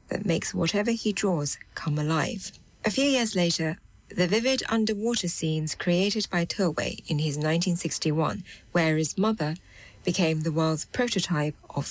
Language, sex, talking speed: English, female, 145 wpm